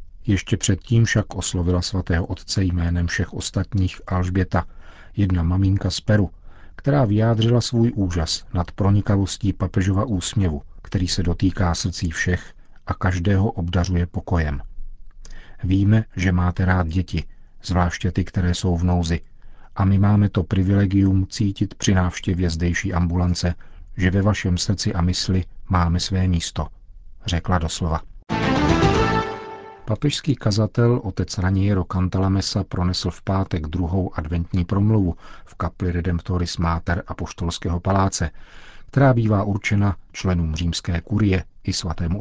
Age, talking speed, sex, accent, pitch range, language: 40-59, 125 wpm, male, native, 90-100 Hz, Czech